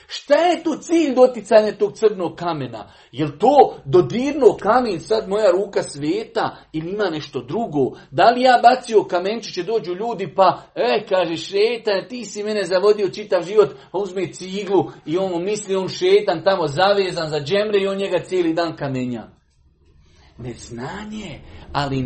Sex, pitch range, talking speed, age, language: male, 150-215 Hz, 155 wpm, 40-59, Croatian